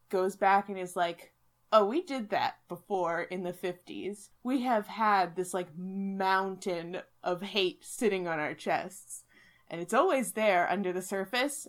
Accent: American